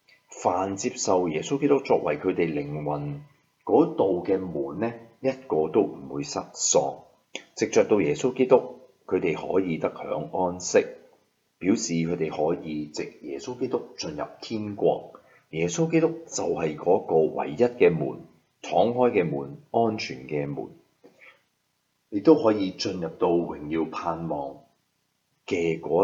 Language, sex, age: Chinese, male, 30-49